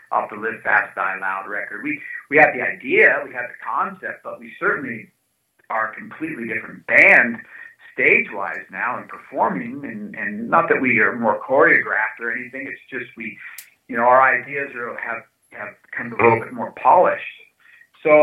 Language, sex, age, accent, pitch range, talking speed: English, male, 50-69, American, 115-150 Hz, 190 wpm